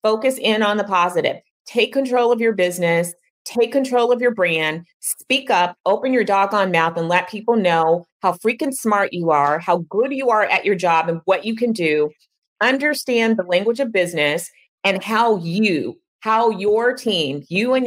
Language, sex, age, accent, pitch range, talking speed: English, female, 30-49, American, 180-235 Hz, 185 wpm